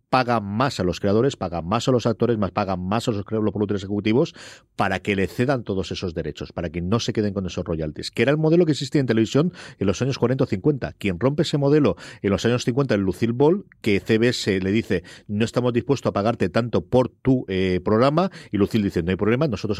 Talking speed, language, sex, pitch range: 240 wpm, Spanish, male, 95-125 Hz